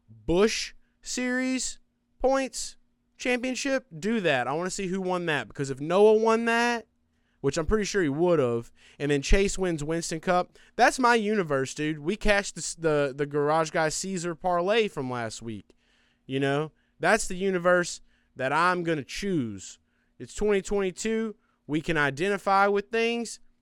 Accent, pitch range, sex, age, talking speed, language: American, 135-205 Hz, male, 20-39, 160 wpm, English